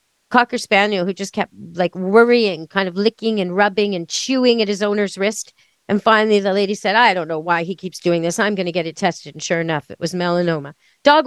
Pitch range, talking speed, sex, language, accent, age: 185-250 Hz, 235 wpm, female, English, American, 40-59